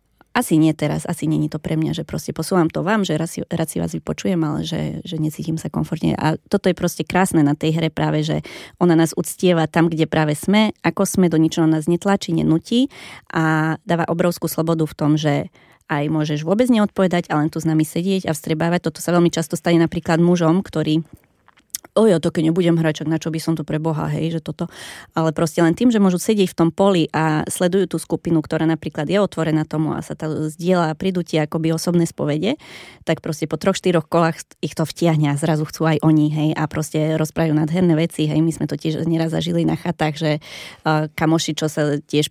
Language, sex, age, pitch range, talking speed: Slovak, female, 20-39, 155-170 Hz, 215 wpm